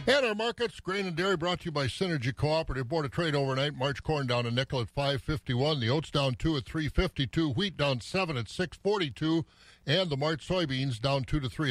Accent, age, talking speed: American, 50-69, 230 wpm